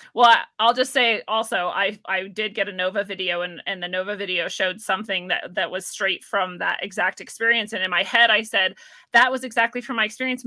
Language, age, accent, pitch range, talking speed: English, 30-49, American, 200-255 Hz, 225 wpm